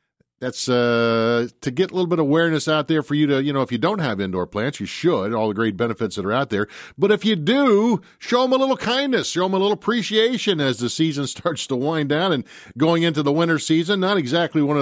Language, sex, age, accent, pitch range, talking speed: English, male, 50-69, American, 120-155 Hz, 250 wpm